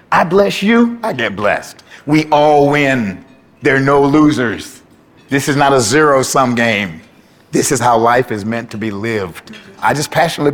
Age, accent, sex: 50-69, American, male